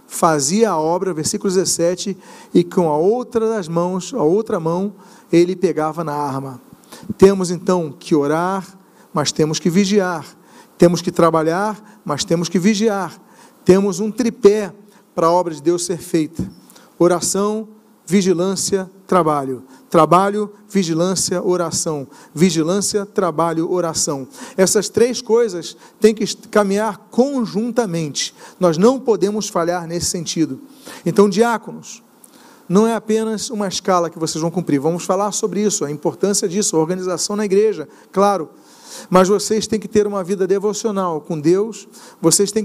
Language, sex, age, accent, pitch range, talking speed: Portuguese, male, 40-59, Brazilian, 175-220 Hz, 140 wpm